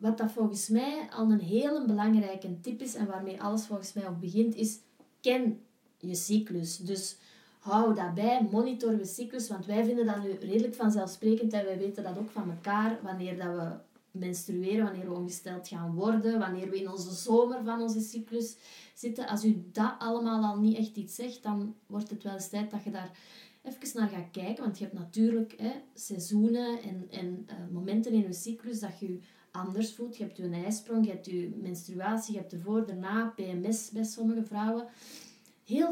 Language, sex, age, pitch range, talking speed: Dutch, female, 20-39, 190-225 Hz, 190 wpm